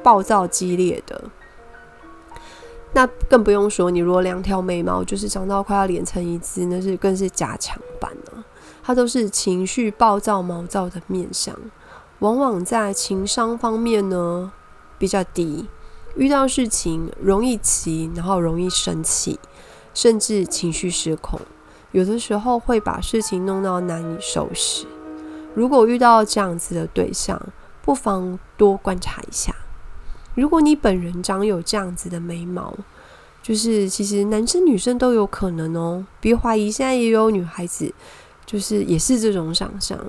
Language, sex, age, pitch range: Chinese, female, 20-39, 180-220 Hz